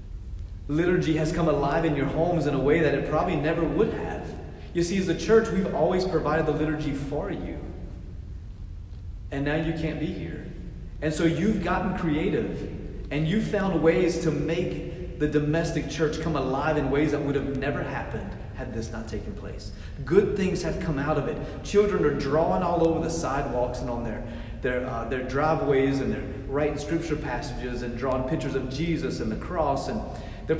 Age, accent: 30-49, American